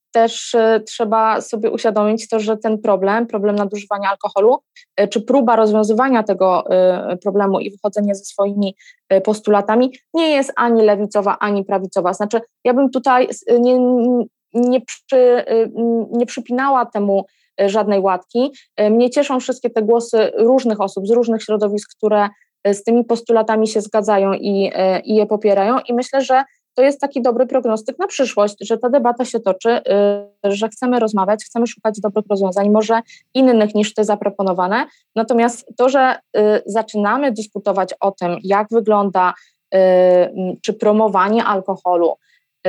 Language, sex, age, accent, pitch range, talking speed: Polish, female, 20-39, native, 200-235 Hz, 135 wpm